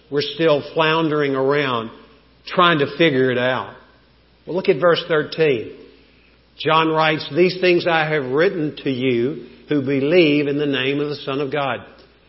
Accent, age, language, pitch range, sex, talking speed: American, 50-69, English, 135-170 Hz, male, 160 wpm